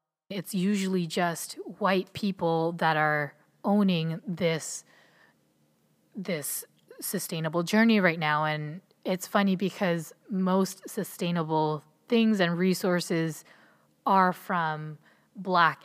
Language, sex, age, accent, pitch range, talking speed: English, female, 20-39, American, 160-195 Hz, 100 wpm